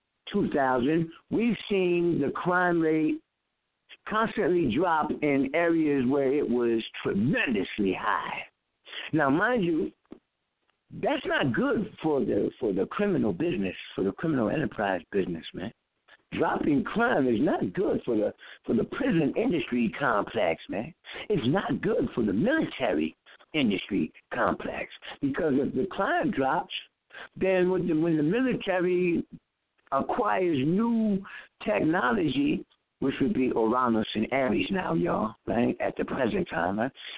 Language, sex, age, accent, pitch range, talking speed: English, male, 60-79, American, 150-220 Hz, 135 wpm